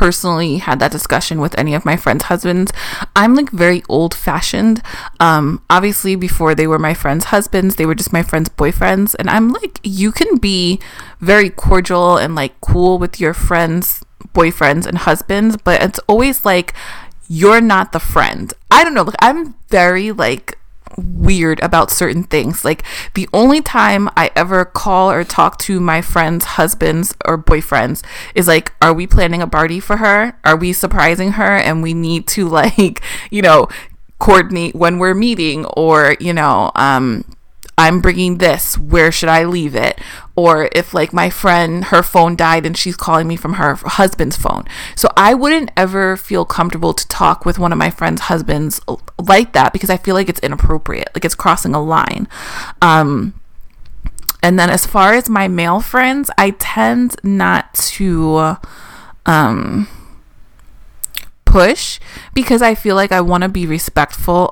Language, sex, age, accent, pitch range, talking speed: English, female, 20-39, American, 165-195 Hz, 165 wpm